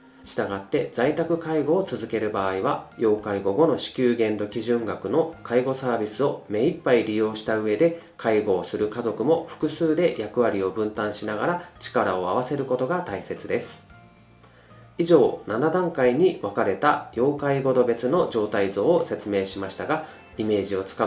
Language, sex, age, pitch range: Japanese, male, 30-49, 110-160 Hz